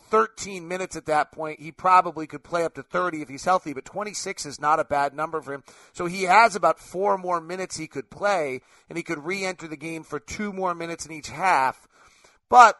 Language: English